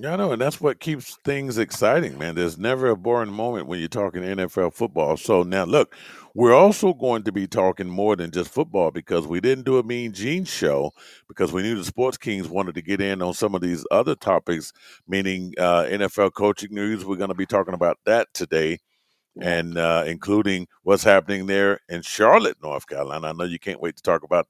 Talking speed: 215 wpm